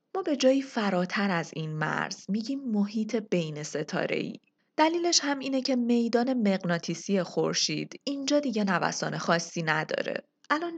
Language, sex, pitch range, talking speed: Persian, female, 175-265 Hz, 140 wpm